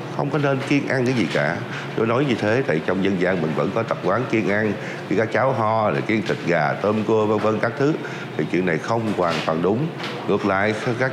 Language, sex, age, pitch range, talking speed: Vietnamese, male, 60-79, 90-120 Hz, 255 wpm